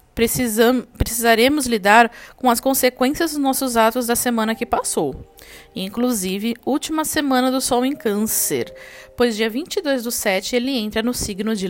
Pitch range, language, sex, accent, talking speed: 215-270 Hz, Portuguese, female, Brazilian, 150 wpm